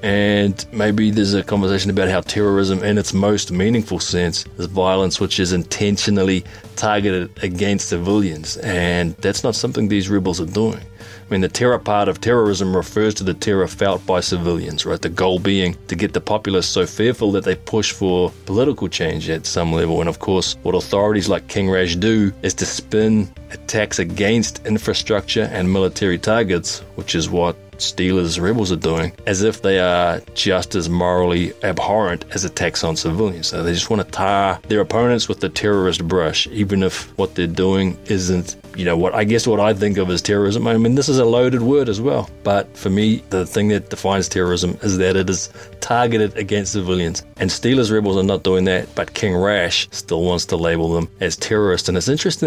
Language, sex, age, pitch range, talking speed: English, male, 20-39, 90-105 Hz, 195 wpm